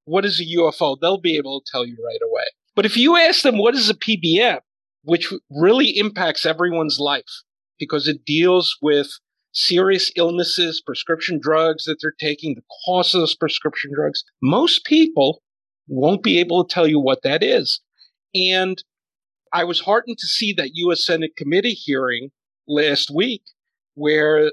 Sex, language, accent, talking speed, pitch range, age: male, English, American, 165 wpm, 150-190 Hz, 40-59